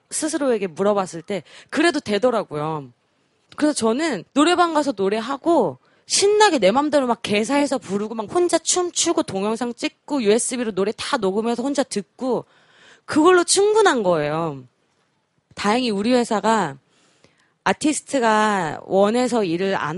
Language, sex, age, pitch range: Korean, female, 20-39, 185-275 Hz